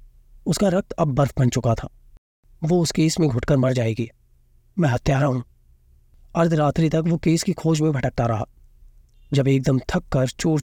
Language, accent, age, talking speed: Hindi, native, 30-49, 180 wpm